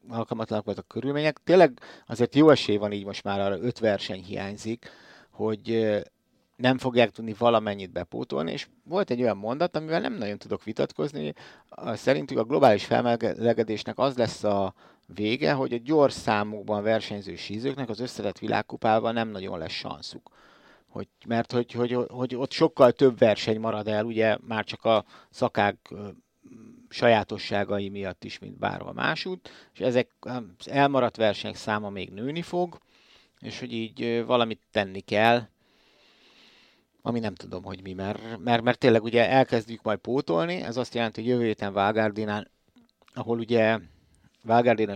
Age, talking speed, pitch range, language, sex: 60-79, 150 wpm, 105-125 Hz, Hungarian, male